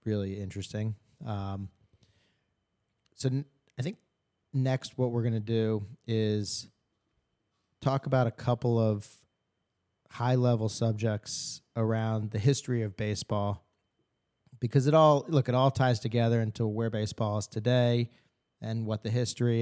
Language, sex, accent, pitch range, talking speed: English, male, American, 110-130 Hz, 130 wpm